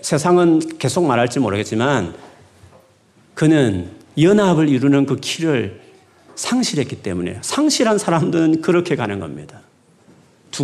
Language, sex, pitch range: Korean, male, 110-175 Hz